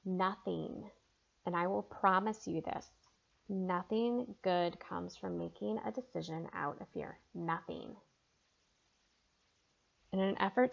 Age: 20-39